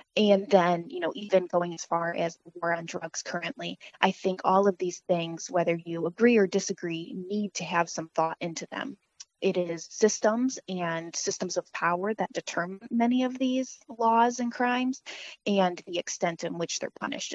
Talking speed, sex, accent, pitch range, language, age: 185 wpm, female, American, 170-205 Hz, English, 20-39